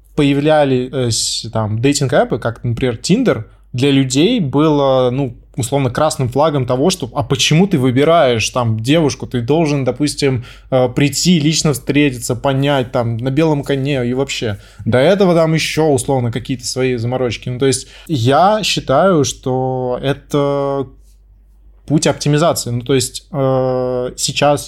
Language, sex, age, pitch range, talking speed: Russian, male, 20-39, 125-150 Hz, 130 wpm